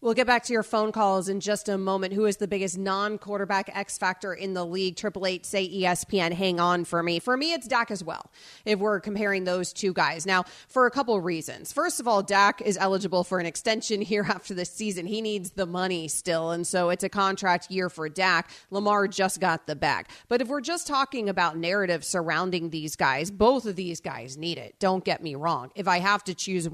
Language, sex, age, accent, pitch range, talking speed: English, female, 30-49, American, 175-210 Hz, 235 wpm